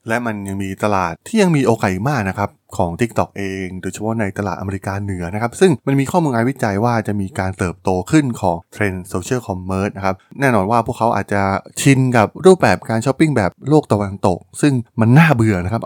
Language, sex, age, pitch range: Thai, male, 20-39, 95-125 Hz